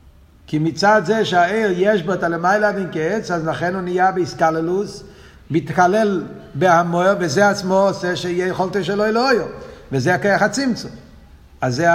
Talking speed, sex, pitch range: 140 wpm, male, 150-215 Hz